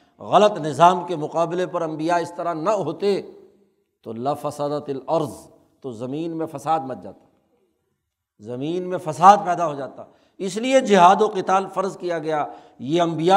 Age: 60-79